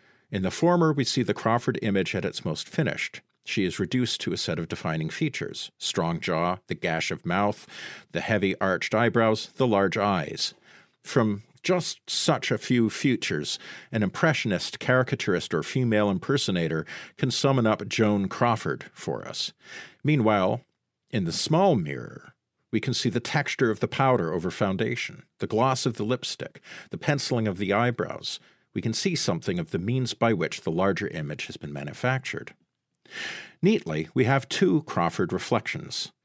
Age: 50-69